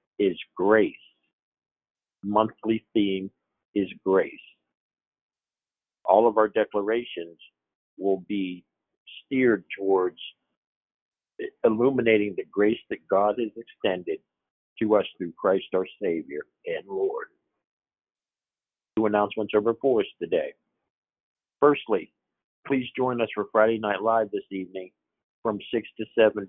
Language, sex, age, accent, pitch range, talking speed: English, male, 50-69, American, 105-140 Hz, 115 wpm